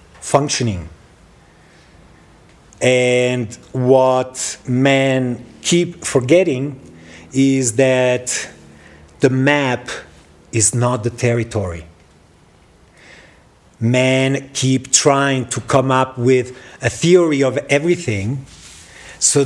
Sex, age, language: male, 50-69, English